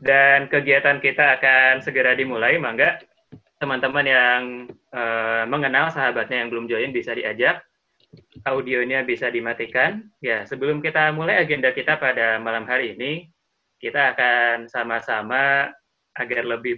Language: Indonesian